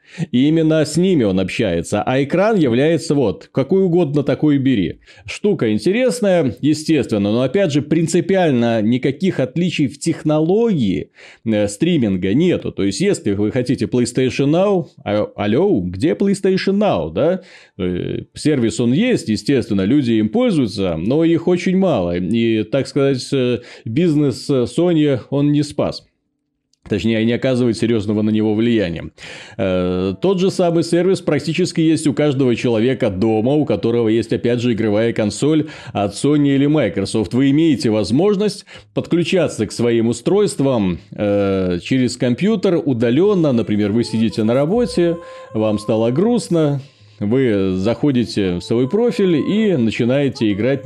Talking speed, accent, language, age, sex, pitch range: 130 wpm, native, Russian, 30-49, male, 110-165 Hz